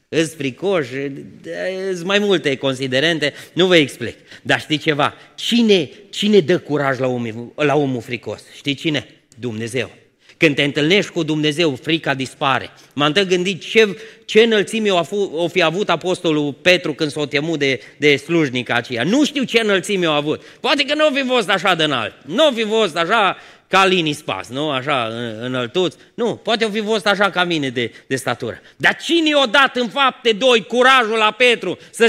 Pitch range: 145-220 Hz